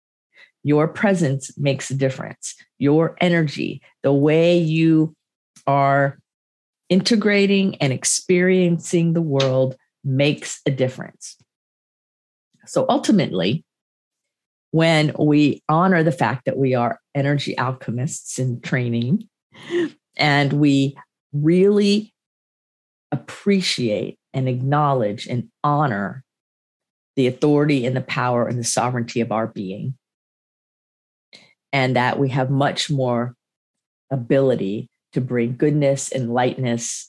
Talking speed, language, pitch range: 105 wpm, English, 120-150 Hz